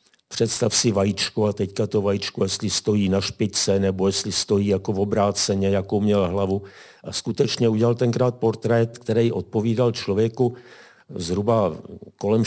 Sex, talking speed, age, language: male, 145 wpm, 50-69, Czech